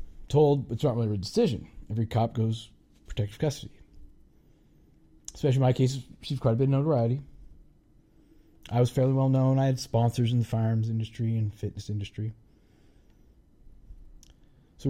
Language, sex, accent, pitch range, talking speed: English, male, American, 110-145 Hz, 145 wpm